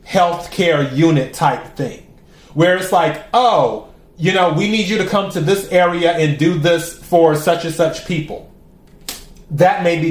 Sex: male